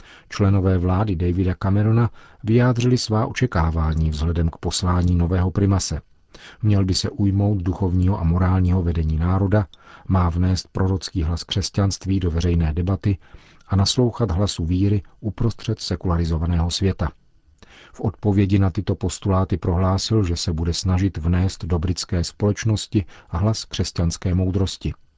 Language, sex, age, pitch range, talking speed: Czech, male, 40-59, 85-100 Hz, 130 wpm